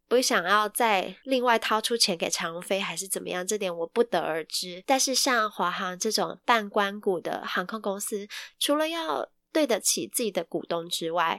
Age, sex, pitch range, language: 20-39, female, 185-235 Hz, Chinese